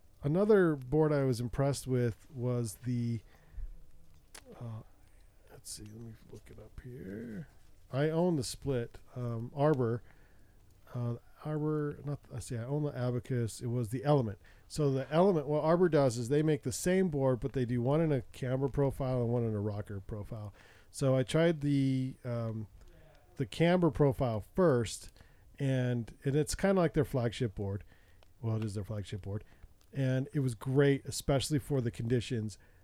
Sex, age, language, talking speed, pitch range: male, 40-59, English, 170 wpm, 110-145 Hz